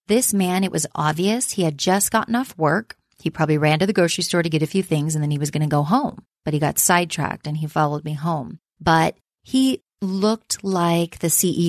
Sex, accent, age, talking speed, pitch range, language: female, American, 30-49, 235 wpm, 155-180 Hz, English